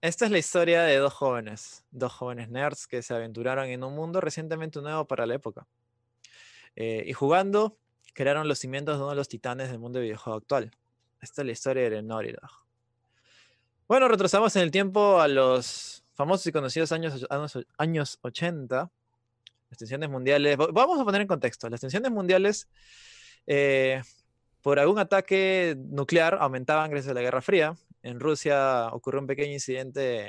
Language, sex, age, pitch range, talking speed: Spanish, male, 20-39, 120-155 Hz, 170 wpm